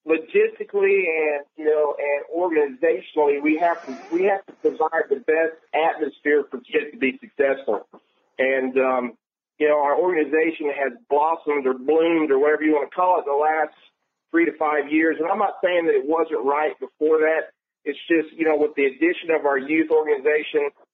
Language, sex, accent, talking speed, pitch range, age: English, male, American, 180 wpm, 145-195 Hz, 40-59